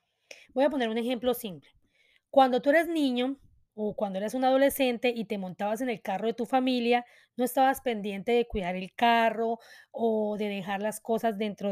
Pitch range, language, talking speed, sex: 215-265 Hz, Spanish, 190 wpm, female